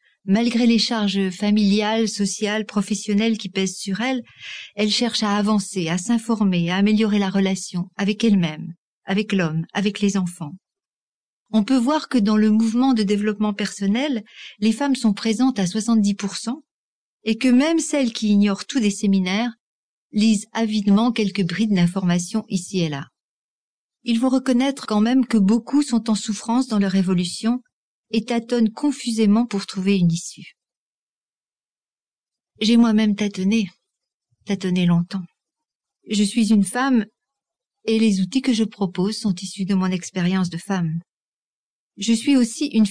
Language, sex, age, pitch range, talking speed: French, female, 50-69, 195-230 Hz, 150 wpm